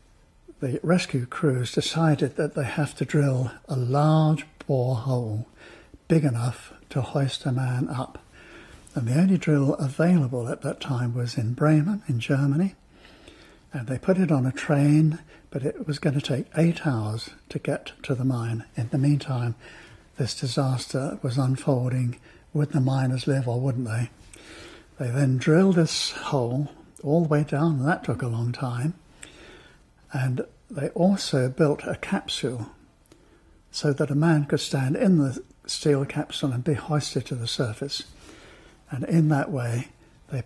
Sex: male